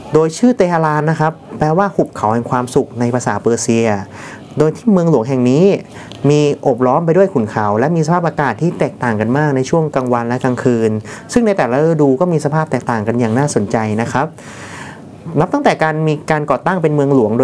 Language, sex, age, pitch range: Thai, male, 30-49, 125-155 Hz